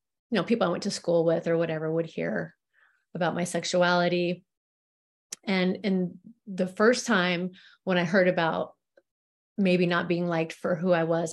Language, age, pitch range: English, 30-49, 175-205 Hz